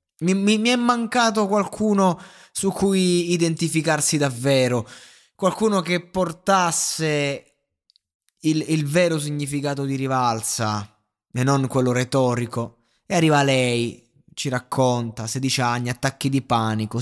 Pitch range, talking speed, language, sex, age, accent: 105-140 Hz, 115 wpm, Italian, male, 20-39, native